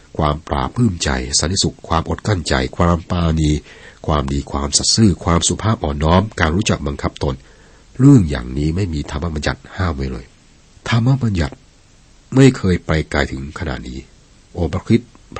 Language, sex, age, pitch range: Thai, male, 60-79, 70-100 Hz